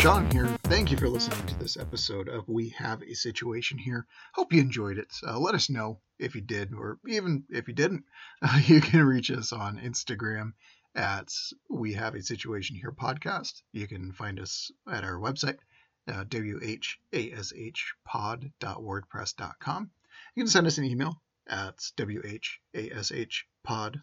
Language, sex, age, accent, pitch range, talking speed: English, male, 30-49, American, 110-140 Hz, 155 wpm